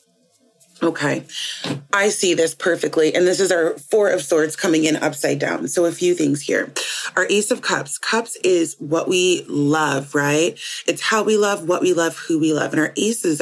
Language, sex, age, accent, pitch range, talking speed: English, female, 30-49, American, 160-210 Hz, 195 wpm